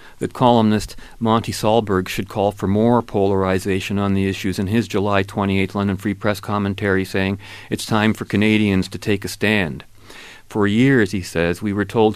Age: 40-59